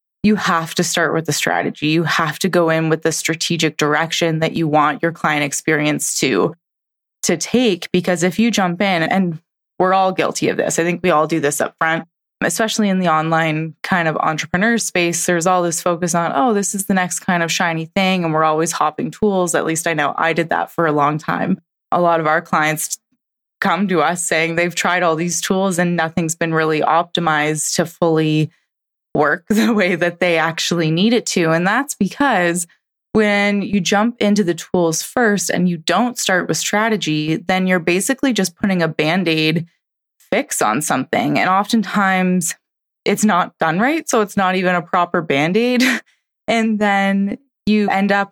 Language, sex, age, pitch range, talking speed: English, female, 20-39, 160-195 Hz, 195 wpm